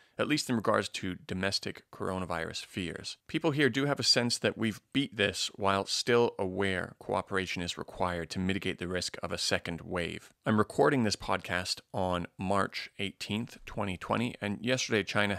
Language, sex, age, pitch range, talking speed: English, male, 30-49, 95-110 Hz, 170 wpm